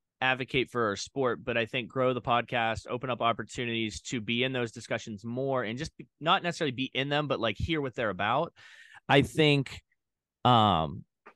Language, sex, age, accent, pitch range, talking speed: English, male, 20-39, American, 110-135 Hz, 180 wpm